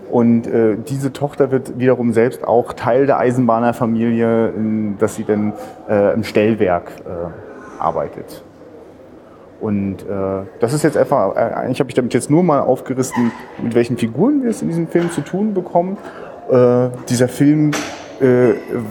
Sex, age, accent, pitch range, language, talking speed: male, 30-49, German, 120-145 Hz, German, 150 wpm